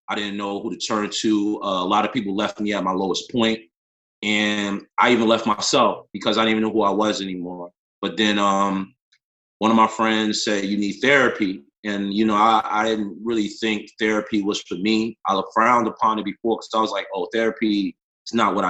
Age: 30-49